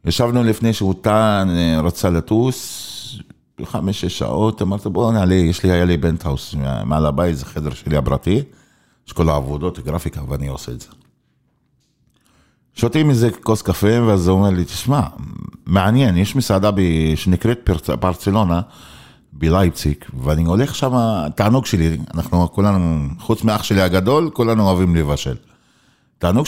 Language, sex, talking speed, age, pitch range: Hebrew, male, 135 wpm, 50-69, 85-120 Hz